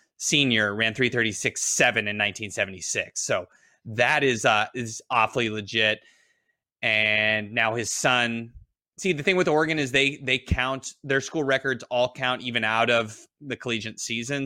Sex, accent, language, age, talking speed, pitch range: male, American, English, 20-39, 155 wpm, 105-125 Hz